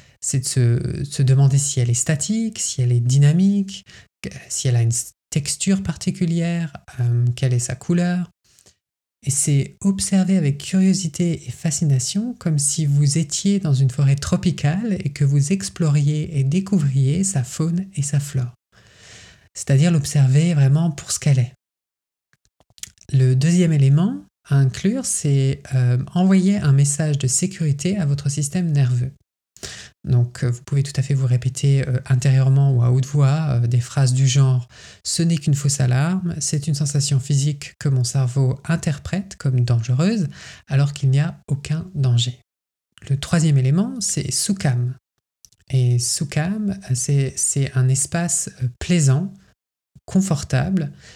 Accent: French